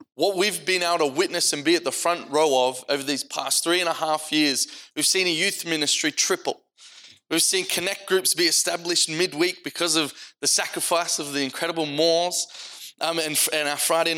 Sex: male